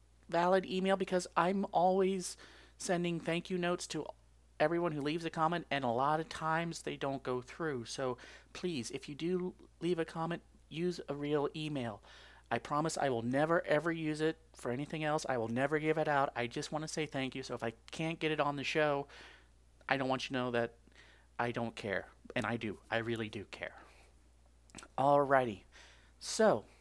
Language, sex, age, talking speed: English, male, 40-59, 195 wpm